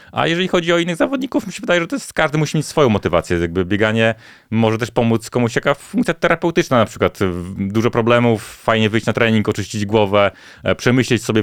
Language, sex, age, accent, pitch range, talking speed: Polish, male, 30-49, native, 105-130 Hz, 190 wpm